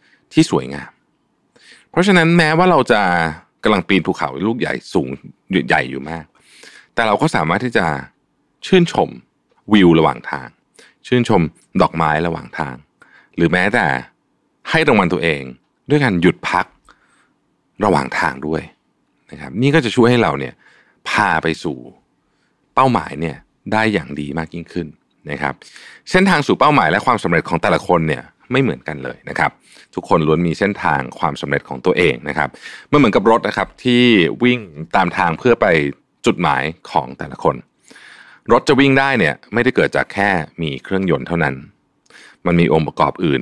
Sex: male